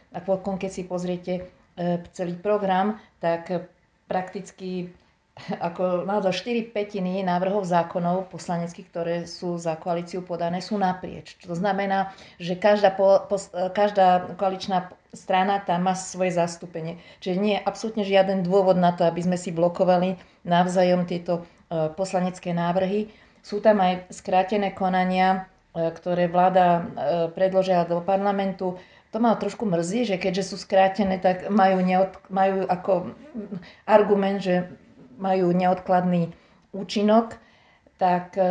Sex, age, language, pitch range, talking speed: female, 40-59, Slovak, 175-195 Hz, 130 wpm